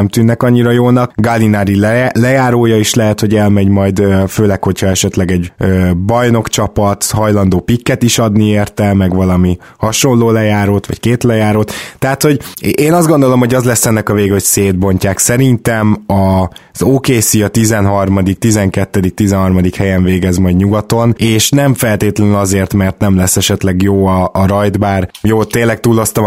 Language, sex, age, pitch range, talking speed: Hungarian, male, 20-39, 95-115 Hz, 155 wpm